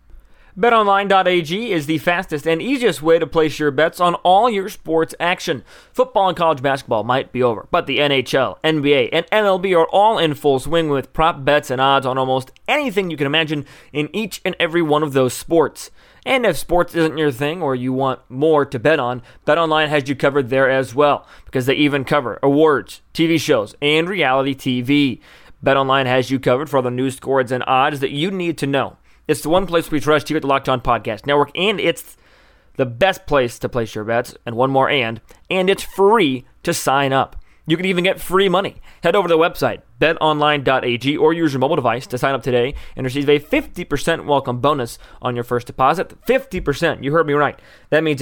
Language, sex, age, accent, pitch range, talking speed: English, male, 30-49, American, 135-165 Hz, 210 wpm